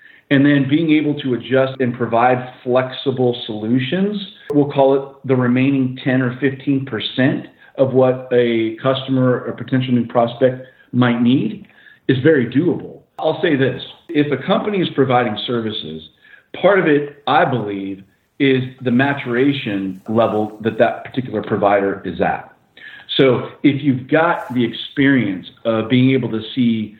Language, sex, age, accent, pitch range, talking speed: English, male, 40-59, American, 120-140 Hz, 145 wpm